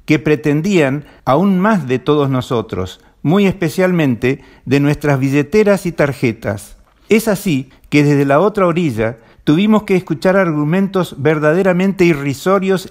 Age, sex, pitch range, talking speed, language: 50-69, male, 140-185 Hz, 125 wpm, Spanish